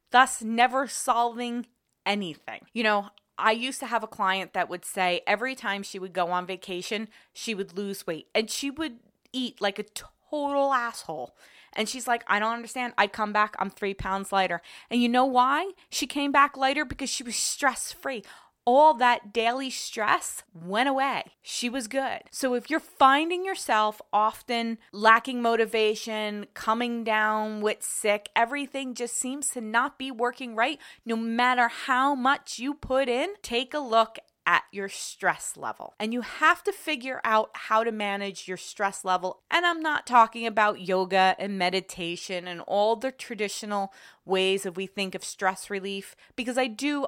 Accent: American